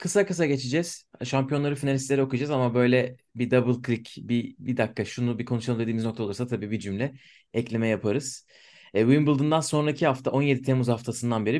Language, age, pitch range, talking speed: Turkish, 30-49, 115-140 Hz, 170 wpm